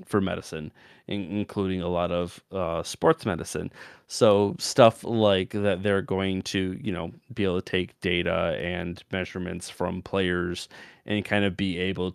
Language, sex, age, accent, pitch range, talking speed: English, male, 30-49, American, 90-110 Hz, 160 wpm